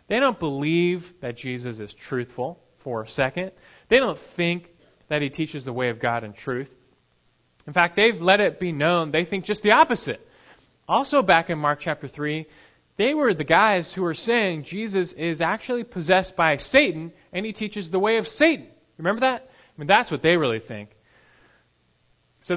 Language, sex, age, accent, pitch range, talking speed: English, male, 30-49, American, 125-180 Hz, 185 wpm